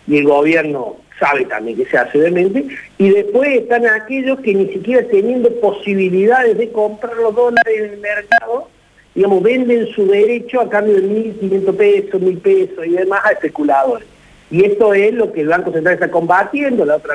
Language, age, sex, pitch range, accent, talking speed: Spanish, 50-69, male, 155-220 Hz, Argentinian, 180 wpm